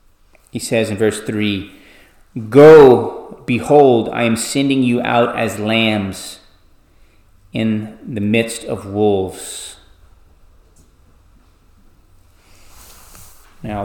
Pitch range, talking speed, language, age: 95-120 Hz, 85 wpm, English, 30-49